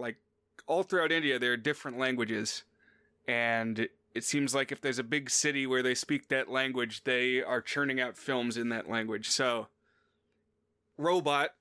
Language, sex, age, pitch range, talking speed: English, male, 30-49, 125-145 Hz, 160 wpm